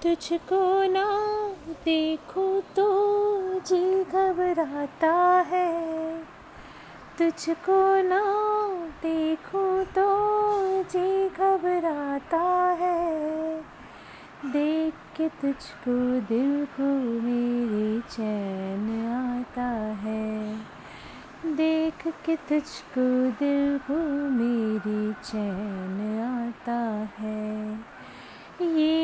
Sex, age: female, 30-49